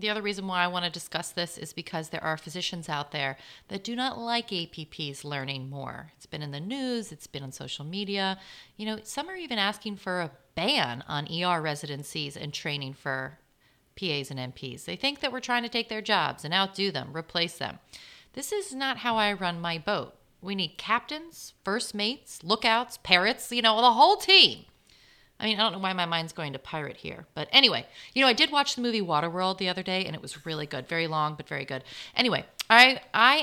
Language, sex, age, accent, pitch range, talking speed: English, female, 30-49, American, 155-225 Hz, 220 wpm